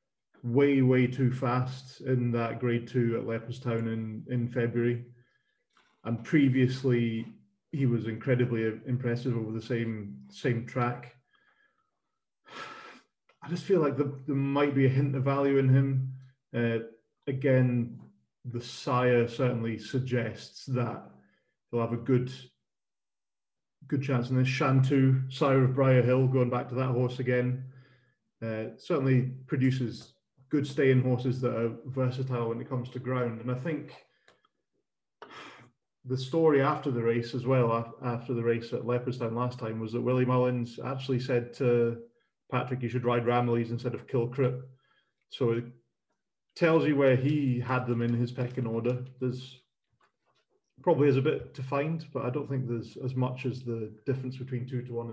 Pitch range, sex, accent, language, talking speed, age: 120-130 Hz, male, British, English, 155 wpm, 30-49